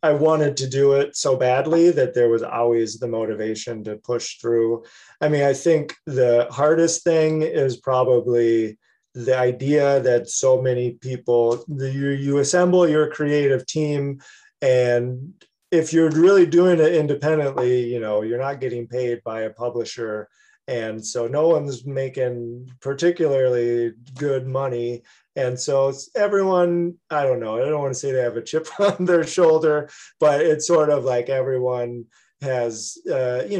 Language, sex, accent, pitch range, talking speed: English, male, American, 120-155 Hz, 160 wpm